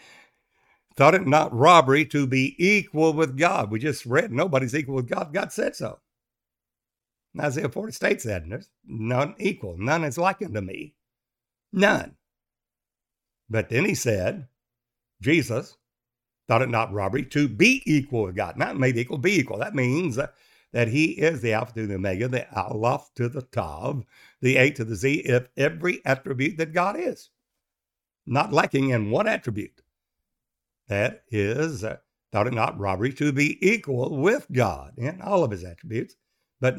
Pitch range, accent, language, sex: 110-145 Hz, American, English, male